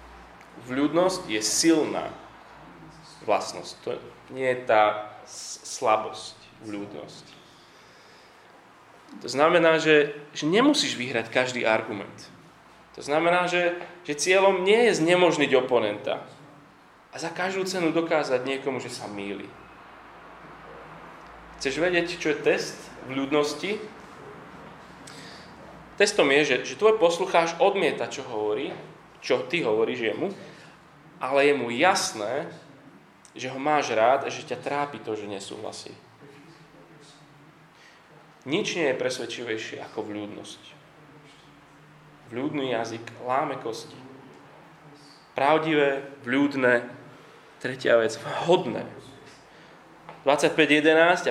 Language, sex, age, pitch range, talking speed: Slovak, male, 20-39, 125-170 Hz, 105 wpm